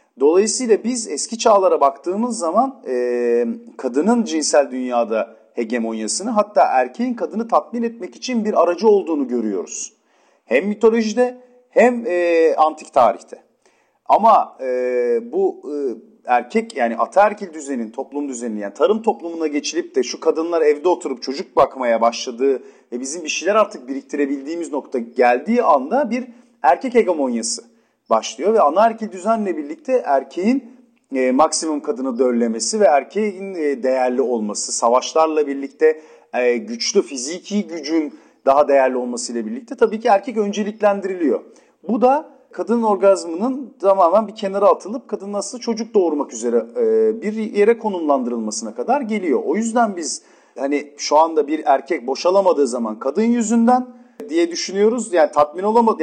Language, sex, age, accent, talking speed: Turkish, male, 40-59, native, 135 wpm